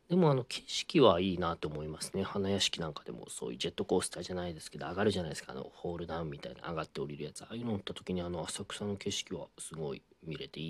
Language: Japanese